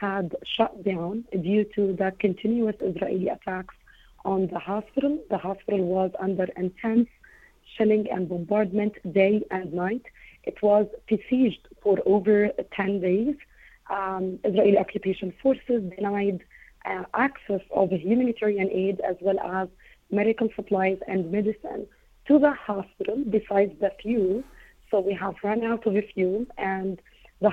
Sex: female